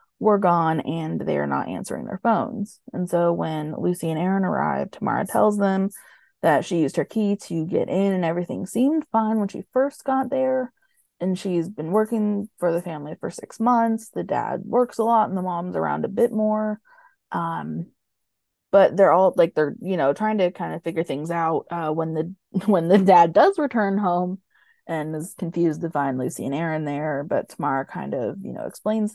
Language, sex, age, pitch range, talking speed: English, female, 20-39, 170-220 Hz, 200 wpm